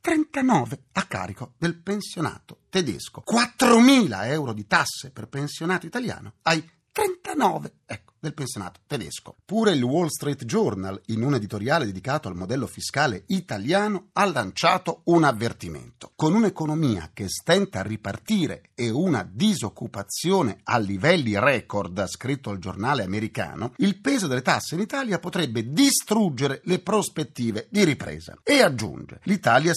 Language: Italian